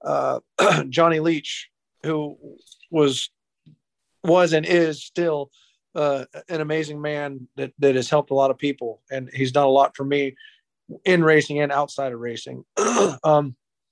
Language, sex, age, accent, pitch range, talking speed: English, male, 40-59, American, 135-165 Hz, 150 wpm